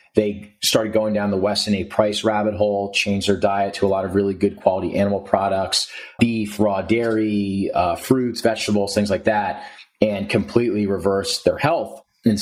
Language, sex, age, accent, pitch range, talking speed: English, male, 30-49, American, 100-110 Hz, 180 wpm